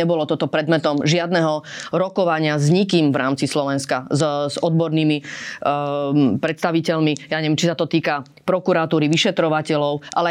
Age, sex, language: 30-49, female, Slovak